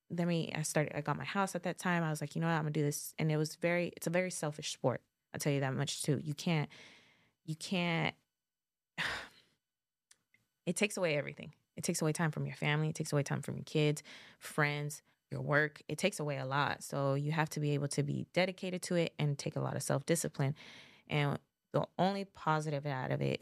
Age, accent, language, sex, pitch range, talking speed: 20-39, American, English, female, 145-170 Hz, 235 wpm